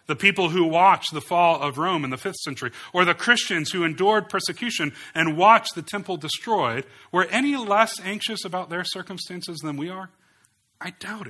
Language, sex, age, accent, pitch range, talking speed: English, male, 40-59, American, 115-170 Hz, 185 wpm